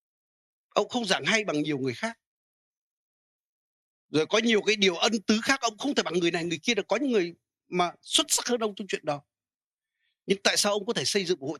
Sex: male